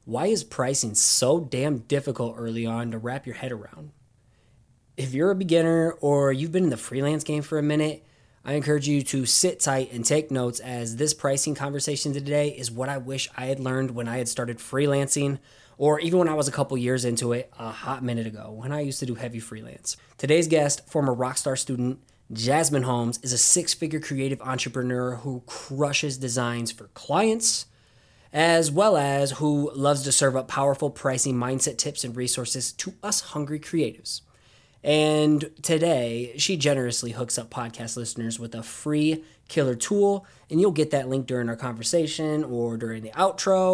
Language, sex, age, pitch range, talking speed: English, male, 20-39, 120-150 Hz, 185 wpm